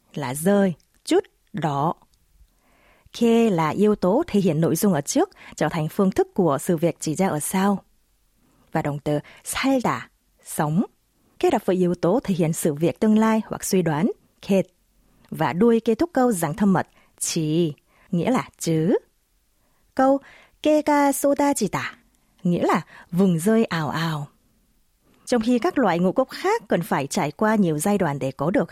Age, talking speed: 20-39, 180 wpm